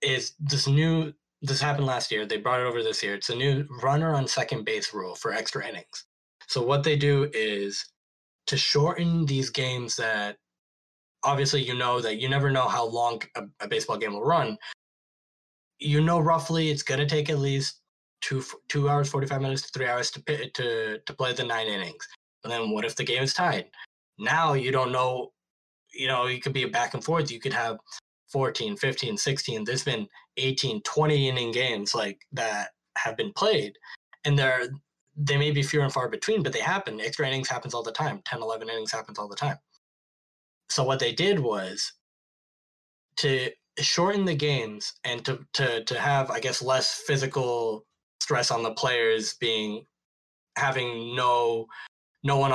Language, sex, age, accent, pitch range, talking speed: English, male, 10-29, American, 120-150 Hz, 185 wpm